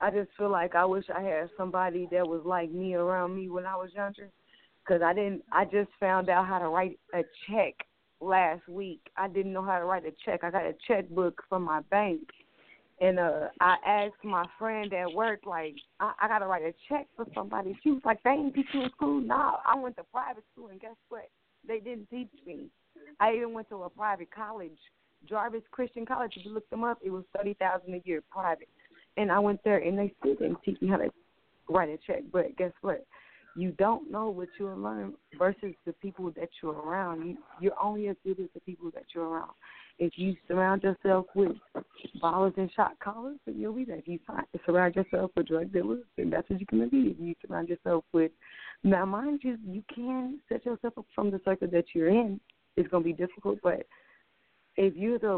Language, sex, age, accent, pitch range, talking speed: English, female, 20-39, American, 180-220 Hz, 220 wpm